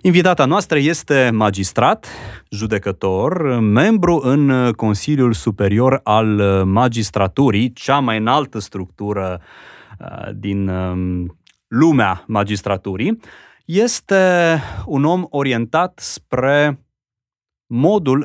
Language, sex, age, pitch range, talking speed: Romanian, male, 30-49, 105-140 Hz, 80 wpm